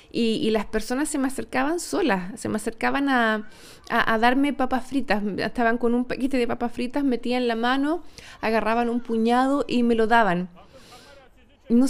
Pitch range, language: 190-245 Hz, Spanish